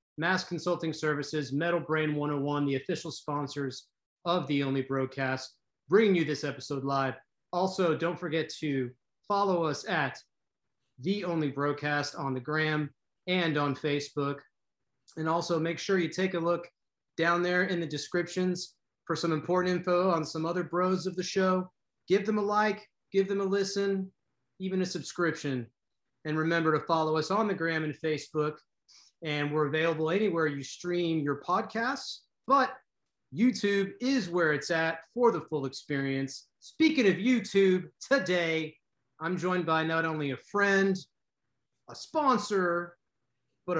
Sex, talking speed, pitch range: male, 150 wpm, 145-185 Hz